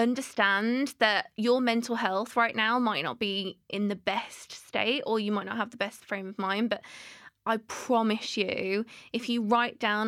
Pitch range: 200-240 Hz